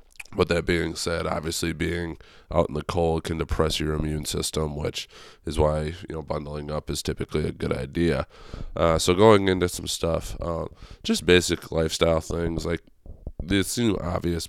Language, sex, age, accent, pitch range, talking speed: English, male, 20-39, American, 80-85 Hz, 175 wpm